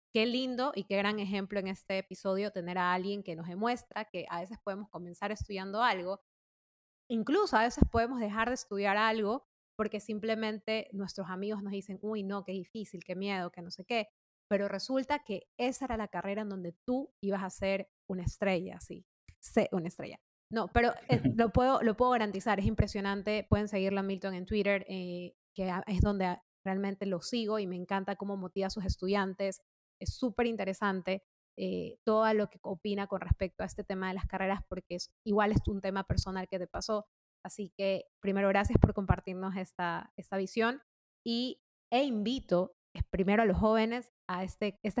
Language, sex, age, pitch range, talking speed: Spanish, female, 20-39, 190-220 Hz, 185 wpm